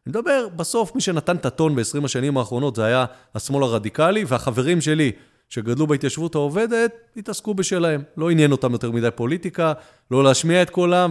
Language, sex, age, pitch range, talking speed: Hebrew, male, 30-49, 120-175 Hz, 165 wpm